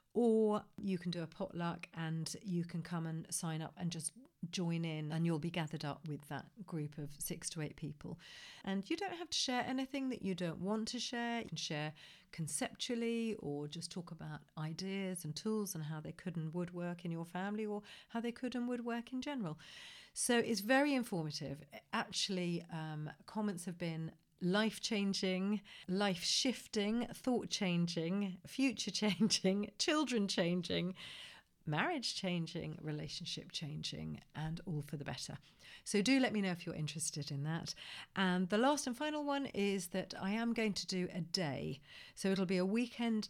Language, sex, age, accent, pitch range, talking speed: English, female, 40-59, British, 165-215 Hz, 180 wpm